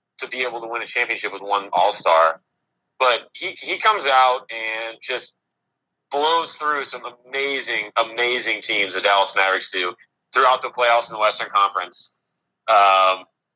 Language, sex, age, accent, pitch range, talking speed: English, male, 30-49, American, 110-135 Hz, 155 wpm